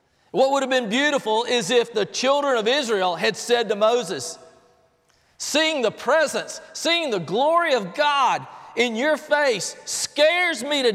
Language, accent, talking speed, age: English, American, 160 wpm, 40-59